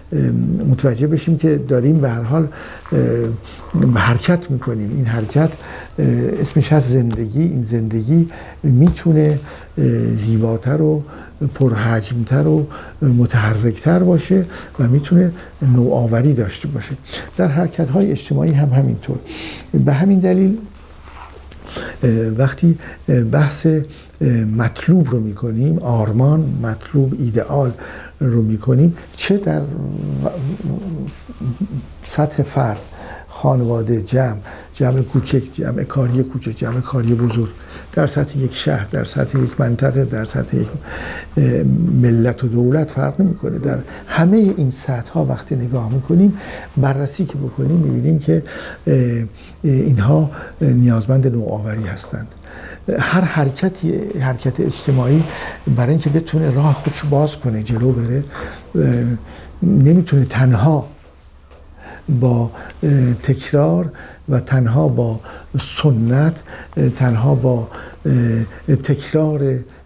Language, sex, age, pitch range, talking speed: Persian, male, 50-69, 120-150 Hz, 105 wpm